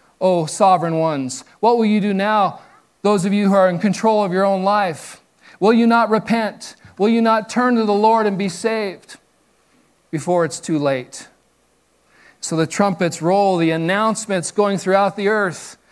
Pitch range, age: 160-205 Hz, 40-59